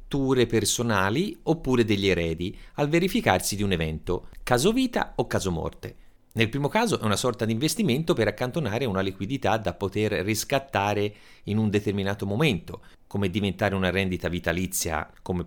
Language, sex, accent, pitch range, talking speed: Italian, male, native, 95-155 Hz, 155 wpm